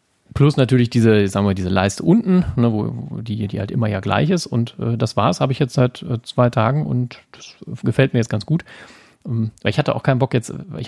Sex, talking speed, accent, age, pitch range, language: male, 235 wpm, German, 40-59, 110-140 Hz, German